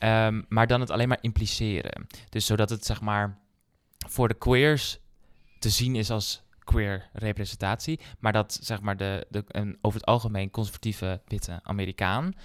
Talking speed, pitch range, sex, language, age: 165 wpm, 100-115 Hz, male, Dutch, 20-39